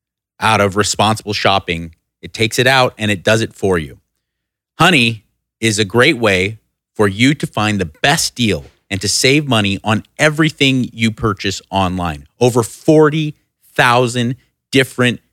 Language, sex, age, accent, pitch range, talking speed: English, male, 30-49, American, 105-135 Hz, 150 wpm